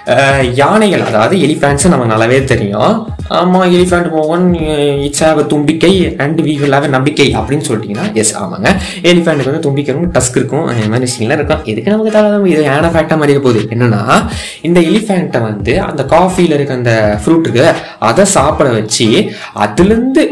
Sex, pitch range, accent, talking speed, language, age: male, 120-175 Hz, native, 125 wpm, Tamil, 20-39